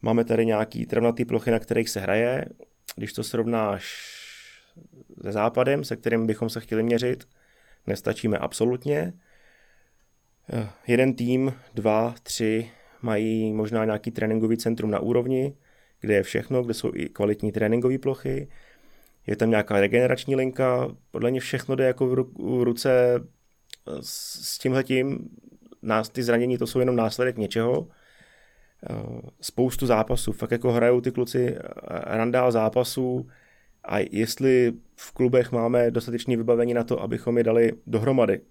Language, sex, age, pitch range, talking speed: Czech, male, 30-49, 110-125 Hz, 135 wpm